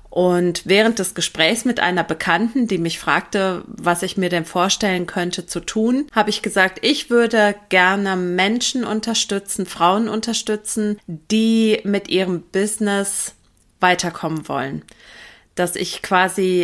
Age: 30-49